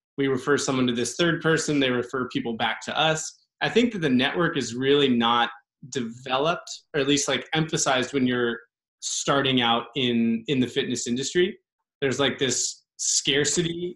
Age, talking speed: 20-39, 170 wpm